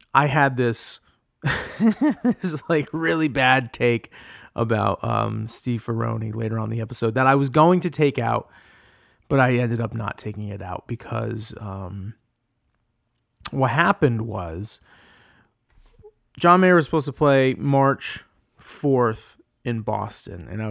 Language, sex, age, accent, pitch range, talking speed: English, male, 30-49, American, 110-140 Hz, 140 wpm